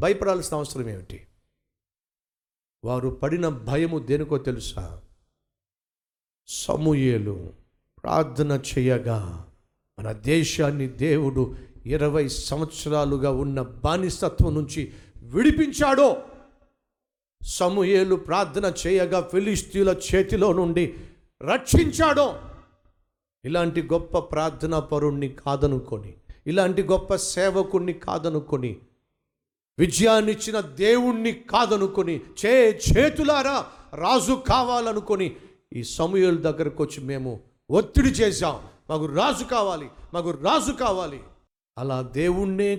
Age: 50-69